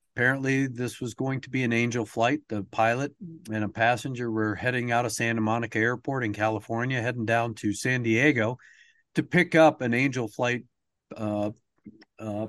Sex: male